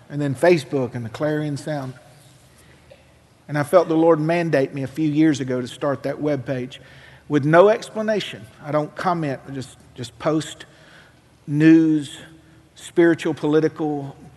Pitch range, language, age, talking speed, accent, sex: 135-175 Hz, English, 50-69, 145 wpm, American, male